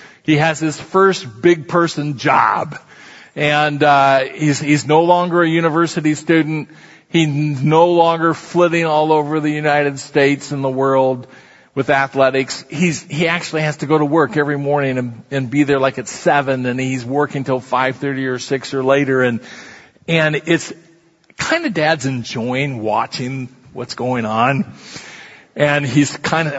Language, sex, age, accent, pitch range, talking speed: English, male, 40-59, American, 135-175 Hz, 165 wpm